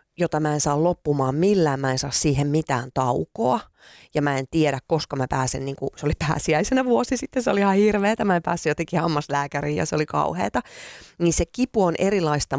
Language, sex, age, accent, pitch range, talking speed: Finnish, female, 30-49, native, 140-175 Hz, 205 wpm